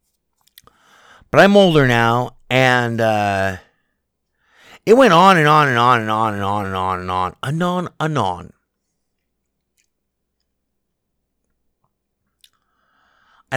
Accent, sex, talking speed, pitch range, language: American, male, 105 wpm, 90-120 Hz, English